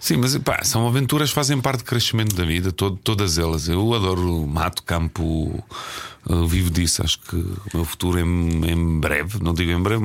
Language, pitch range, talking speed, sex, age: Portuguese, 90-110 Hz, 205 wpm, male, 40-59